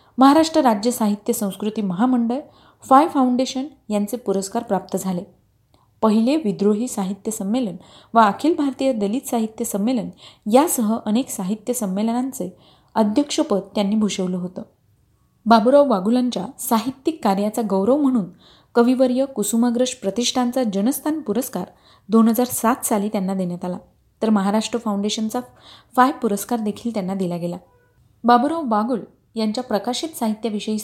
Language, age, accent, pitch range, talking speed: Marathi, 30-49, native, 195-245 Hz, 115 wpm